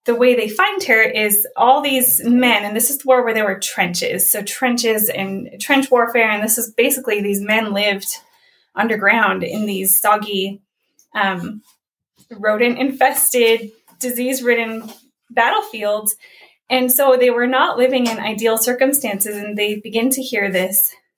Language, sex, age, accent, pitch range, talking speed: English, female, 10-29, American, 205-250 Hz, 150 wpm